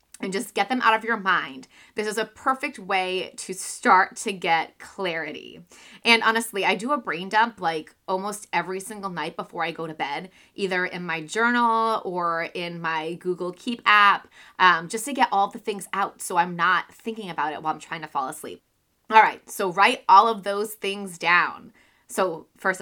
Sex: female